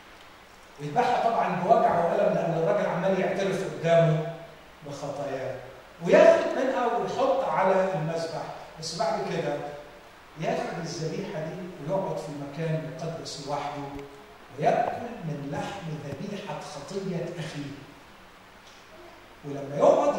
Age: 40-59